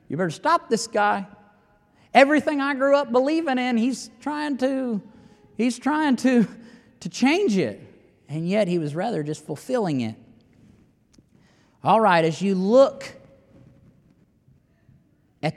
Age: 40-59